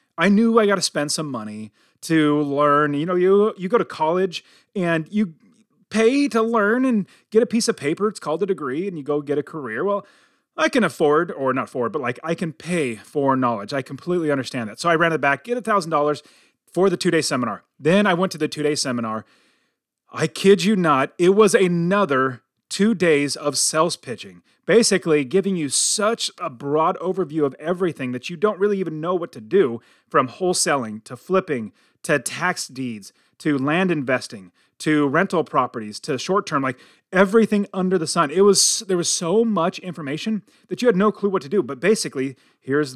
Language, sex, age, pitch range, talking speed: English, male, 30-49, 145-200 Hz, 205 wpm